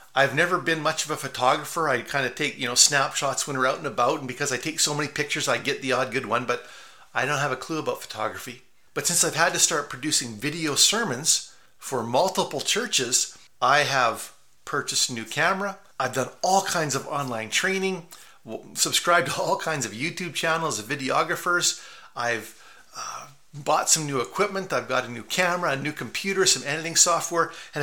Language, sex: English, male